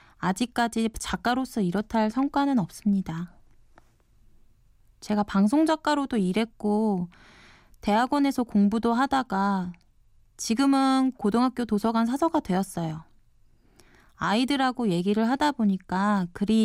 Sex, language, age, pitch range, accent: female, Korean, 20-39, 190-260 Hz, native